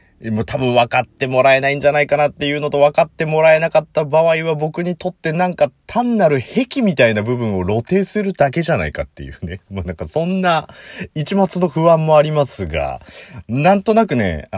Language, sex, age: Japanese, male, 40-59